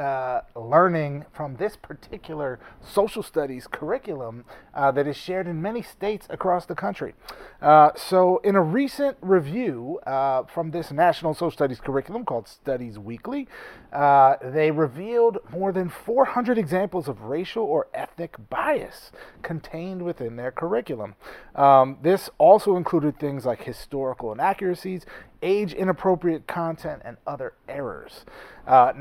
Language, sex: English, male